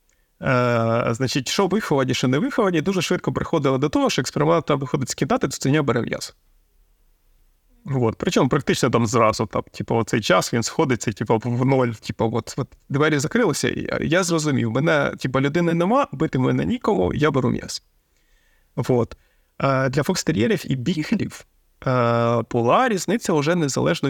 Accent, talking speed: native, 150 wpm